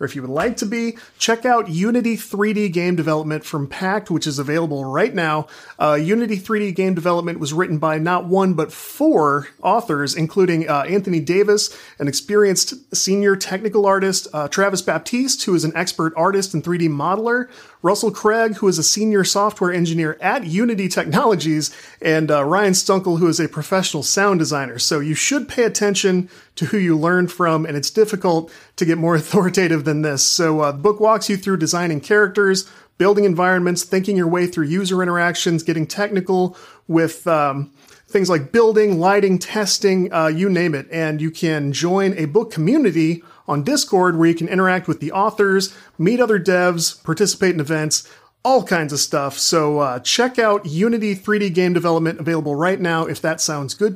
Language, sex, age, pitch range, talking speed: English, male, 30-49, 160-205 Hz, 180 wpm